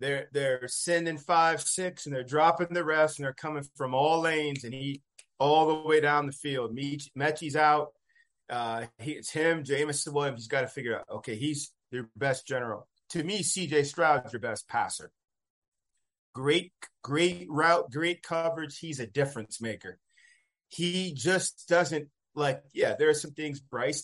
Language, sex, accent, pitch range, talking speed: English, male, American, 130-160 Hz, 170 wpm